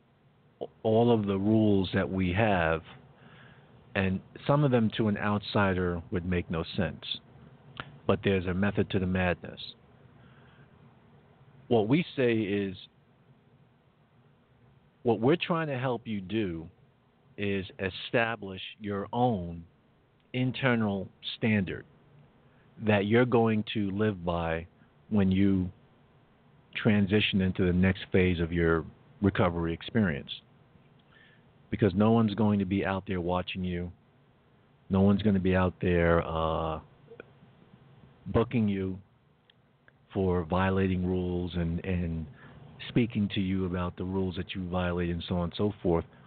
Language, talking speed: English, 130 wpm